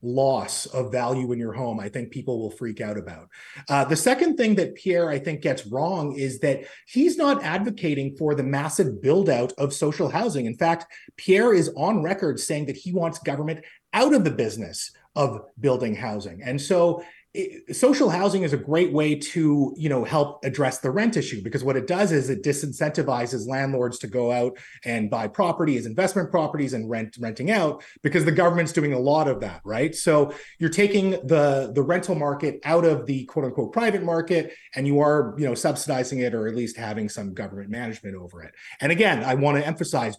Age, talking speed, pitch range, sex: 30-49, 200 wpm, 125-165 Hz, male